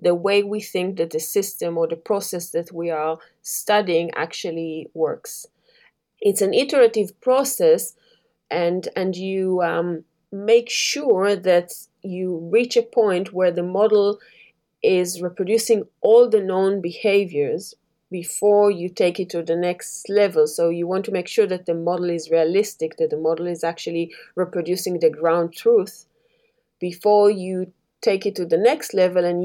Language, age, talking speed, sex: English, 30-49, 155 wpm, female